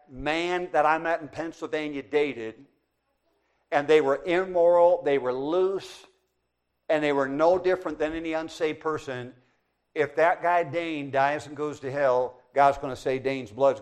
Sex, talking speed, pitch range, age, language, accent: male, 165 wpm, 110-165 Hz, 50-69, English, American